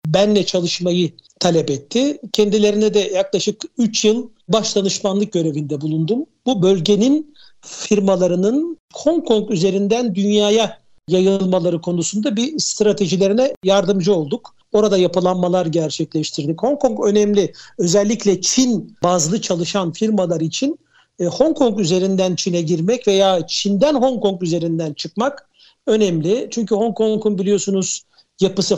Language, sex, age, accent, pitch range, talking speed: Turkish, male, 60-79, native, 180-220 Hz, 115 wpm